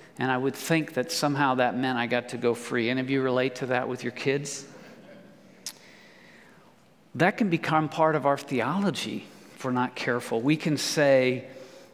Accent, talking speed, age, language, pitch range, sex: American, 180 wpm, 50-69, English, 130-165 Hz, male